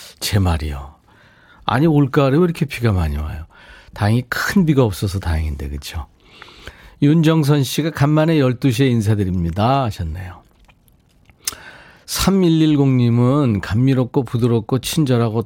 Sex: male